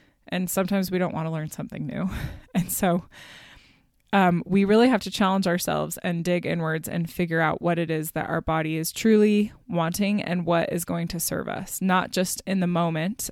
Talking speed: 205 wpm